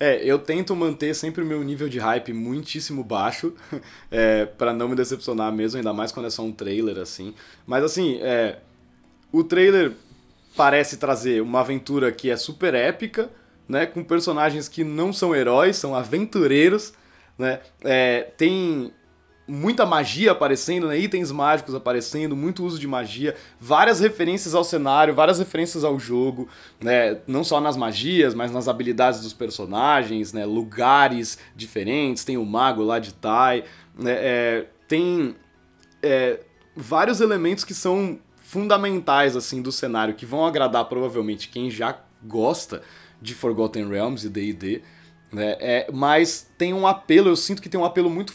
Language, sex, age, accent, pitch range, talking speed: Portuguese, male, 20-39, Brazilian, 120-180 Hz, 150 wpm